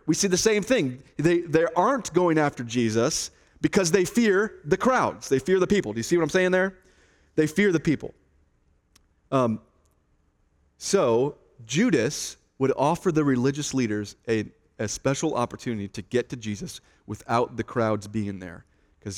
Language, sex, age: English, male, 30-49